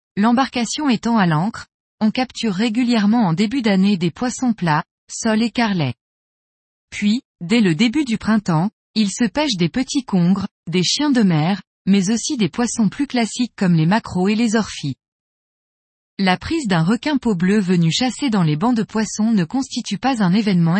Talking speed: 180 wpm